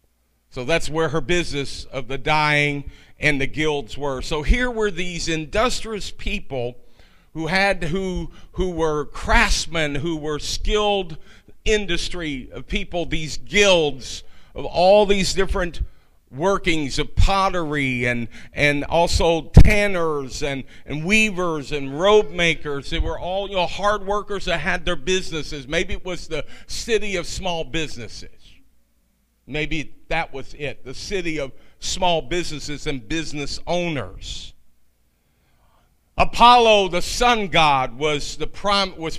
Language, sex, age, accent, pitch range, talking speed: English, male, 50-69, American, 130-190 Hz, 135 wpm